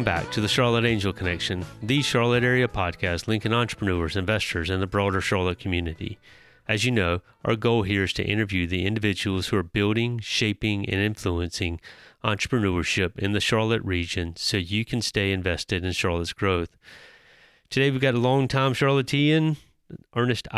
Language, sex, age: English, male, 30-49